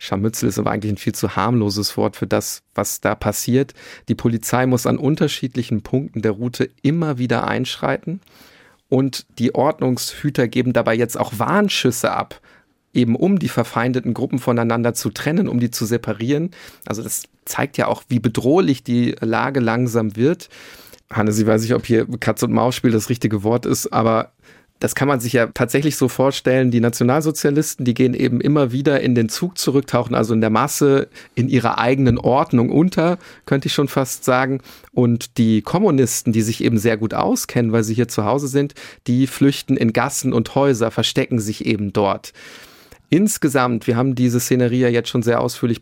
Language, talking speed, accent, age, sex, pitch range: German, 180 wpm, German, 40-59, male, 115-135 Hz